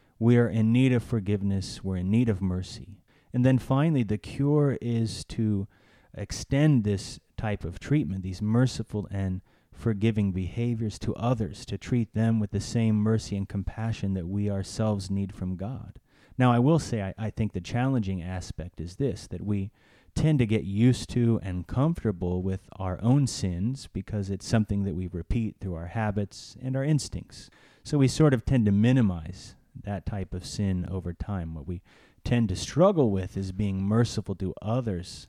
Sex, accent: male, American